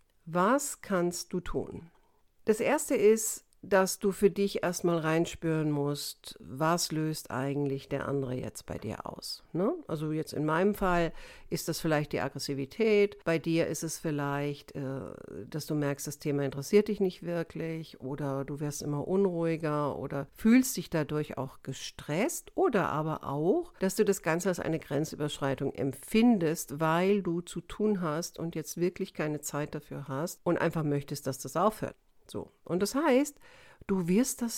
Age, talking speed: 60-79, 160 wpm